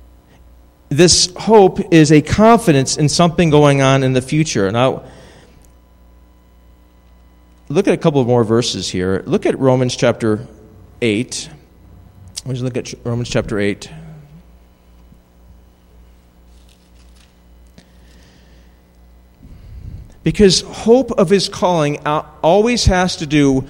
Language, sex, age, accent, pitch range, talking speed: English, male, 40-59, American, 100-155 Hz, 110 wpm